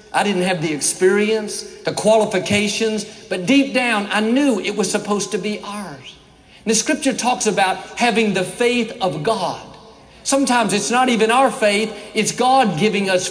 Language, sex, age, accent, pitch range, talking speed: English, male, 50-69, American, 190-245 Hz, 170 wpm